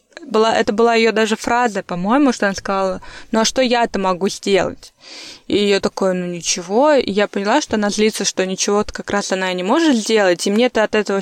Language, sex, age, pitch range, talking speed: Russian, female, 20-39, 195-245 Hz, 215 wpm